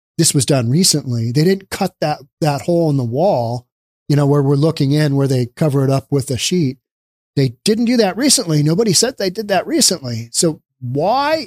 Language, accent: English, American